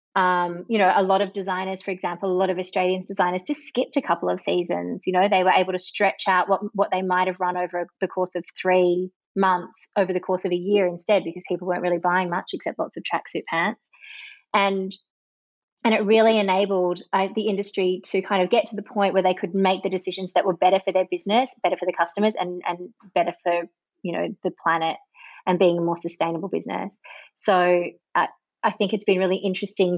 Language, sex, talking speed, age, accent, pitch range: English, female, 220 wpm, 20-39, Australian, 180-200 Hz